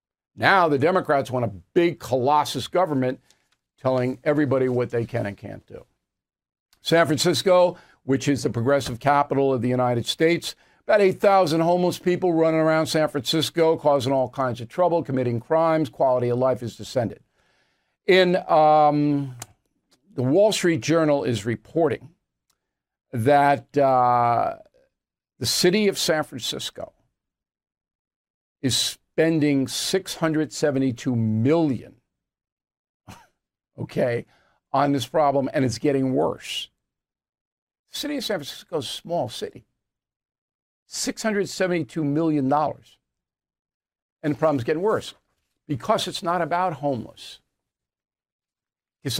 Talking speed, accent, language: 115 wpm, American, English